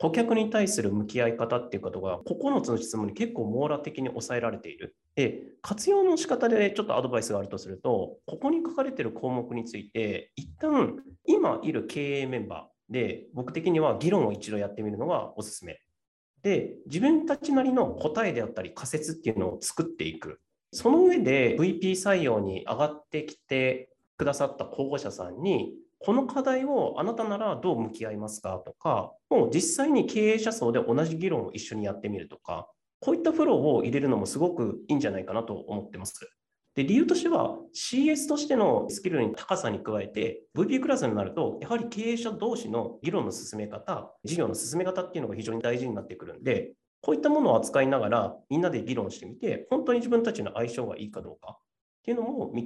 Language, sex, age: Japanese, male, 30-49